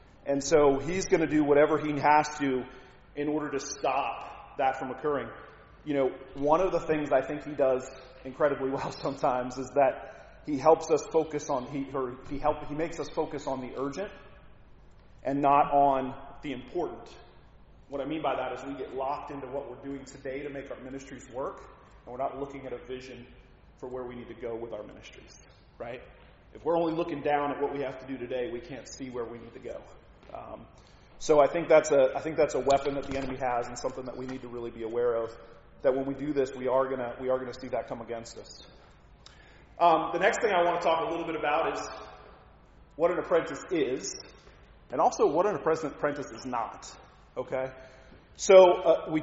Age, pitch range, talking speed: 30-49, 130-150 Hz, 215 wpm